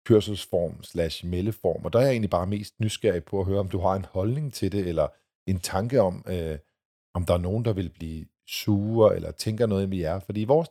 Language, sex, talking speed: Danish, male, 235 wpm